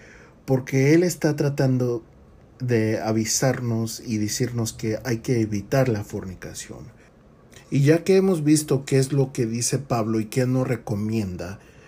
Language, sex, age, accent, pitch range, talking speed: Spanish, male, 40-59, Mexican, 110-150 Hz, 145 wpm